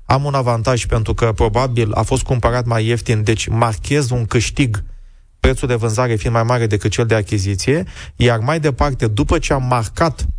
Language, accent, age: Romanian, native, 30-49